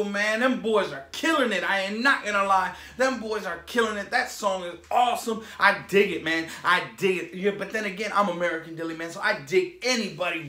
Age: 30-49